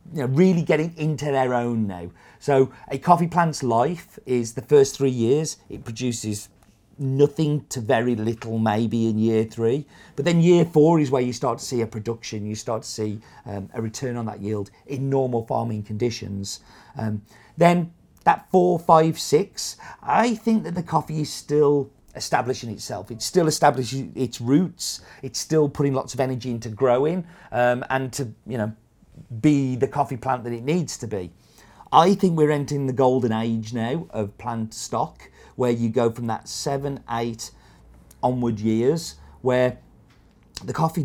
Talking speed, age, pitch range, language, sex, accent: 175 wpm, 40-59, 110-140 Hz, English, male, British